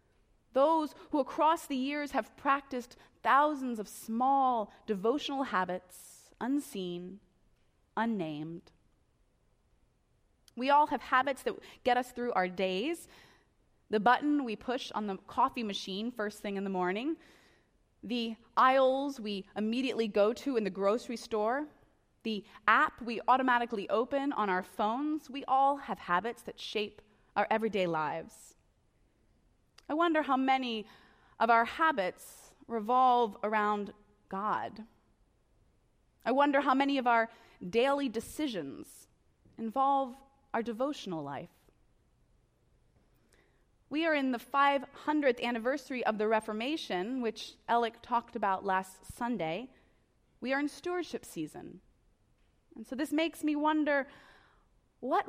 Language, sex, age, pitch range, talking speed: English, female, 20-39, 210-275 Hz, 125 wpm